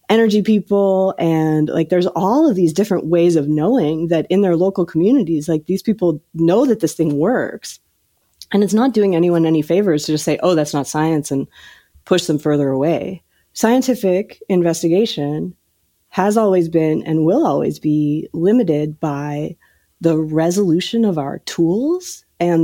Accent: American